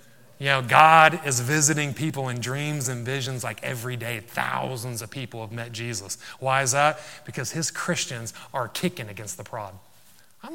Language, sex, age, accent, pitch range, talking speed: English, male, 30-49, American, 125-190 Hz, 175 wpm